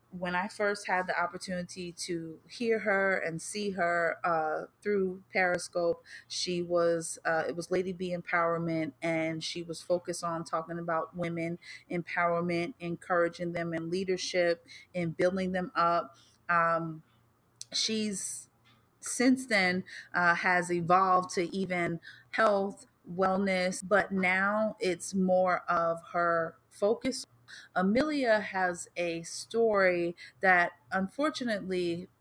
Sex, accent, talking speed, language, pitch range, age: female, American, 120 wpm, English, 170-190 Hz, 30-49